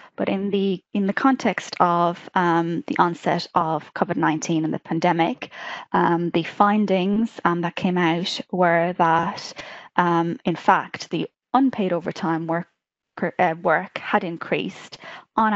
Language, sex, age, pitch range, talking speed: English, female, 20-39, 170-205 Hz, 140 wpm